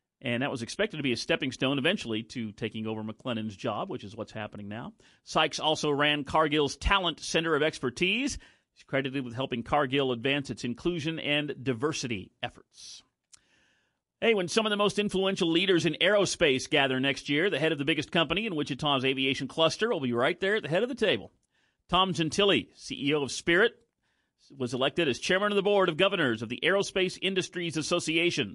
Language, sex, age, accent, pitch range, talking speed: English, male, 40-59, American, 130-165 Hz, 190 wpm